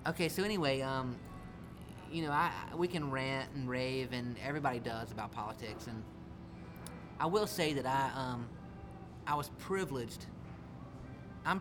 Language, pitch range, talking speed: English, 115-145 Hz, 145 wpm